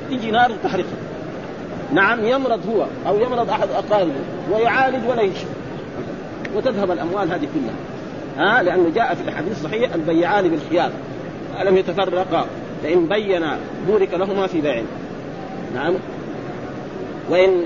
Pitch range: 170-215 Hz